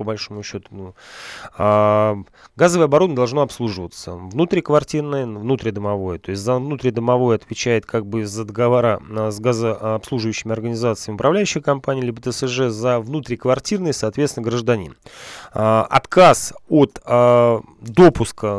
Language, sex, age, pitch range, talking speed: Russian, male, 20-39, 110-135 Hz, 115 wpm